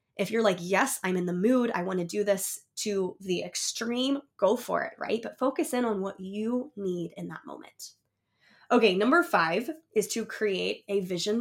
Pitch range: 190-230 Hz